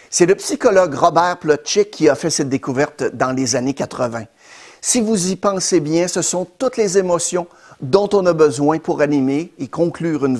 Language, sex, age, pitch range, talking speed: French, male, 50-69, 140-185 Hz, 190 wpm